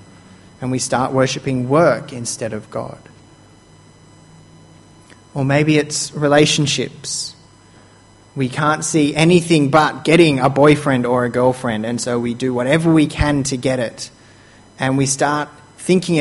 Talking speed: 135 wpm